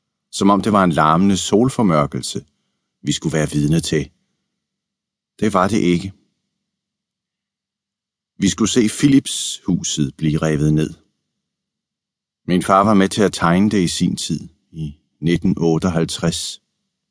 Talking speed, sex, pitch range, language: 125 wpm, male, 85-105 Hz, Danish